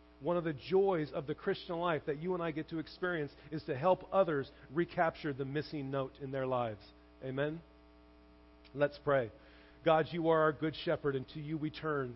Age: 40-59